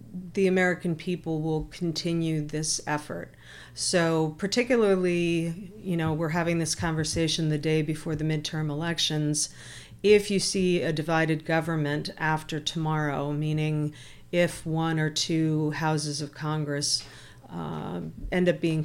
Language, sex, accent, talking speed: English, female, American, 130 wpm